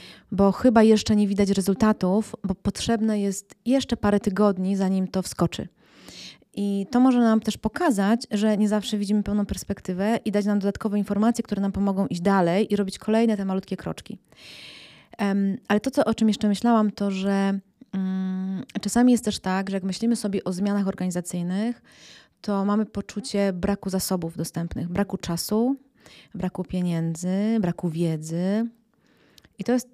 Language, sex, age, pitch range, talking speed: Polish, female, 30-49, 185-210 Hz, 155 wpm